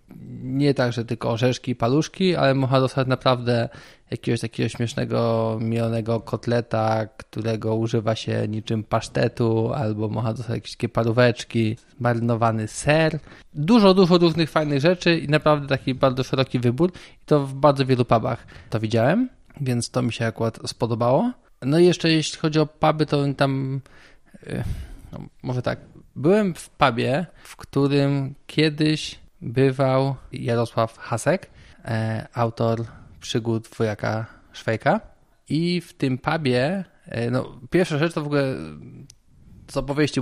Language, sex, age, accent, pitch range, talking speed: Polish, male, 20-39, native, 115-150 Hz, 130 wpm